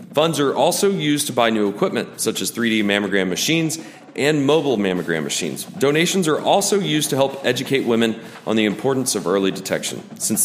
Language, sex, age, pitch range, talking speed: English, male, 40-59, 110-155 Hz, 185 wpm